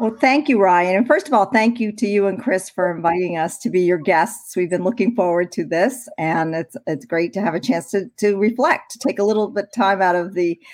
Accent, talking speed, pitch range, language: American, 270 wpm, 170-215 Hz, English